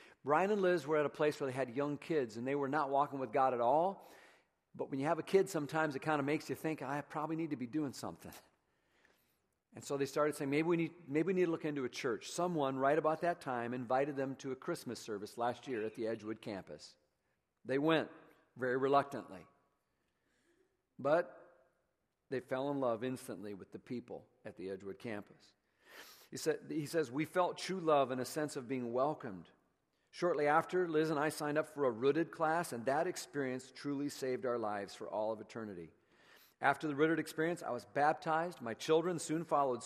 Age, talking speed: 50-69, 210 wpm